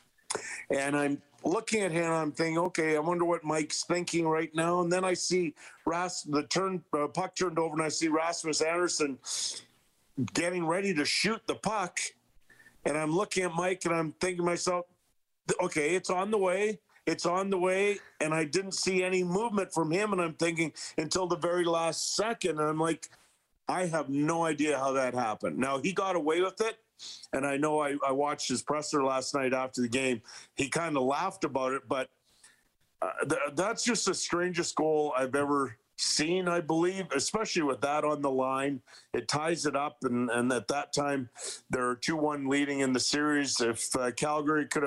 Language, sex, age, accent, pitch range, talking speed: English, male, 50-69, American, 140-175 Hz, 195 wpm